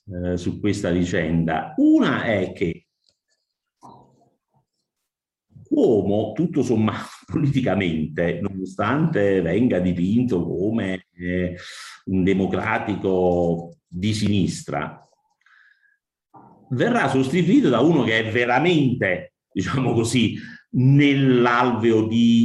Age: 50-69